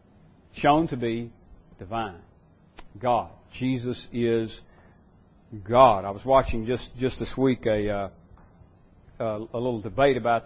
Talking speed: 120 wpm